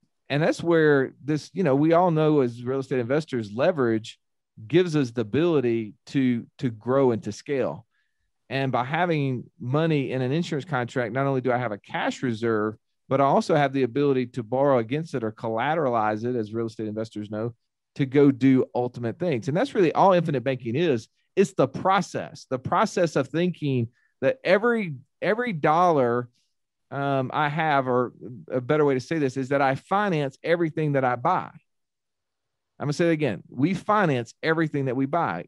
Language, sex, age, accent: English, male, 40-59, American